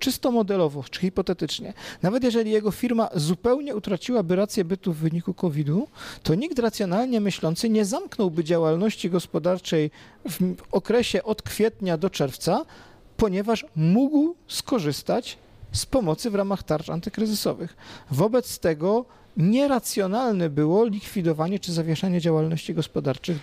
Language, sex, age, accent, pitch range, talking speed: Polish, male, 40-59, native, 170-230 Hz, 120 wpm